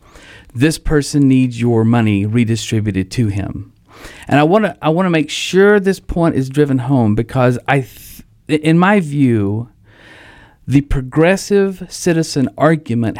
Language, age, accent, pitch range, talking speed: English, 50-69, American, 110-150 Hz, 135 wpm